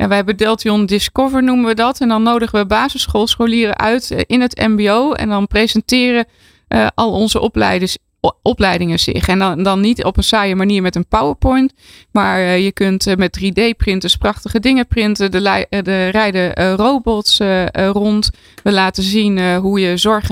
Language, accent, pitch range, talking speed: Dutch, Dutch, 195-230 Hz, 185 wpm